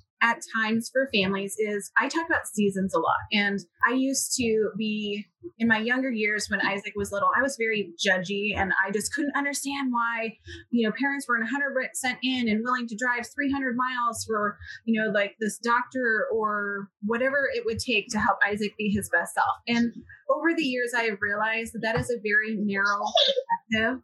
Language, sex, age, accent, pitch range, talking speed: English, female, 20-39, American, 210-260 Hz, 195 wpm